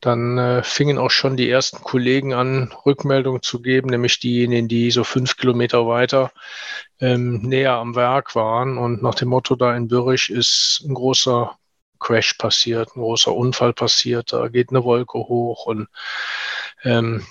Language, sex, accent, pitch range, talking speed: German, male, German, 120-140 Hz, 165 wpm